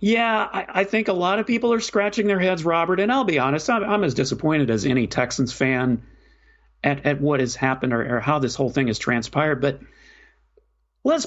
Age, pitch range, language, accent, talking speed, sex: 40-59, 135-205 Hz, English, American, 215 wpm, male